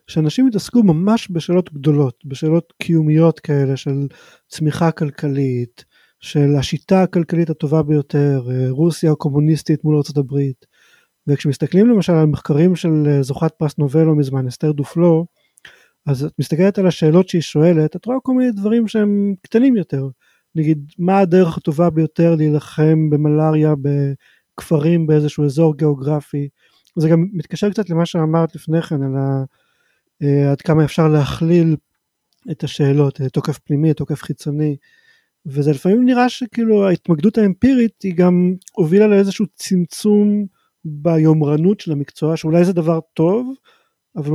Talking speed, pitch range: 130 wpm, 145-185 Hz